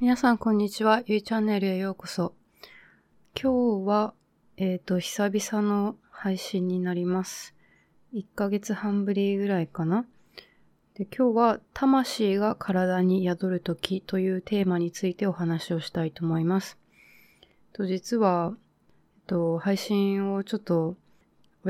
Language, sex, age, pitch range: Japanese, female, 20-39, 175-205 Hz